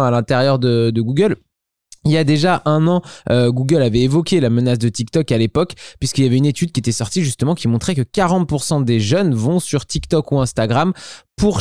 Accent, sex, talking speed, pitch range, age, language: French, male, 215 wpm, 115-155 Hz, 20-39, French